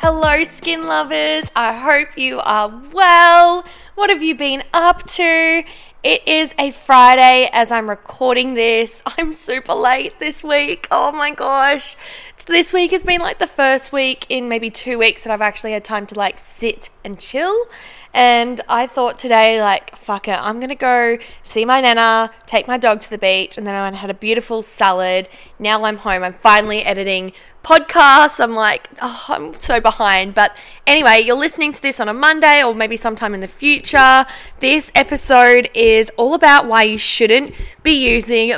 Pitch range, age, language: 210-275 Hz, 10-29, English